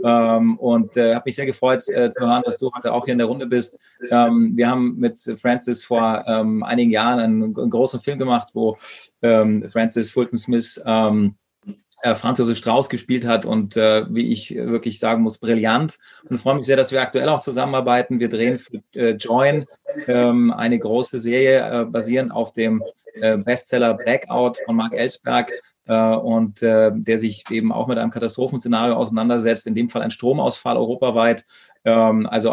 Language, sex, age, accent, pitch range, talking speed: German, male, 30-49, German, 115-135 Hz, 180 wpm